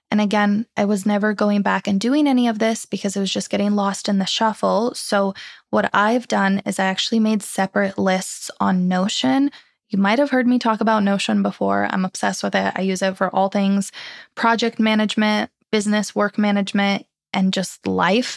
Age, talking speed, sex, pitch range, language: 20-39, 195 wpm, female, 195-230 Hz, English